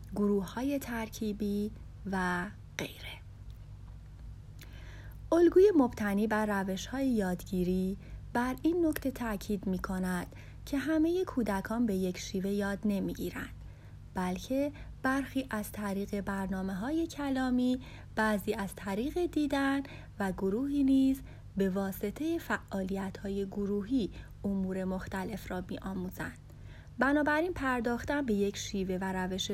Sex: female